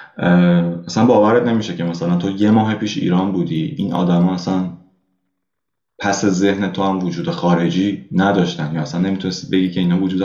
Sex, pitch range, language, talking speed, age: male, 85-100 Hz, Persian, 170 wpm, 20-39